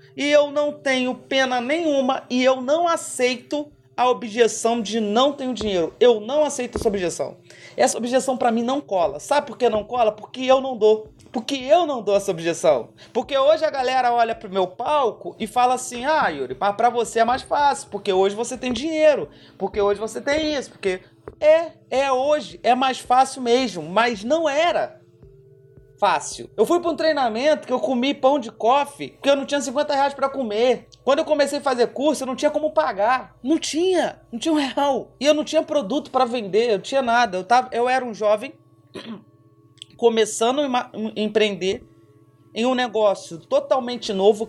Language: Portuguese